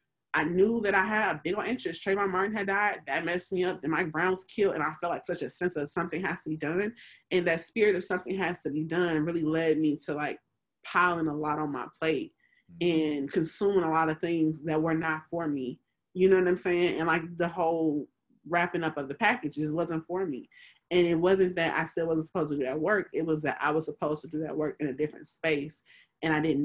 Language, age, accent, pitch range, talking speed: English, 20-39, American, 155-205 Hz, 250 wpm